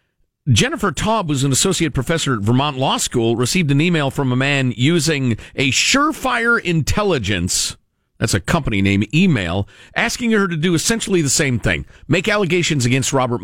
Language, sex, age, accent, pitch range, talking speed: English, male, 50-69, American, 110-175 Hz, 155 wpm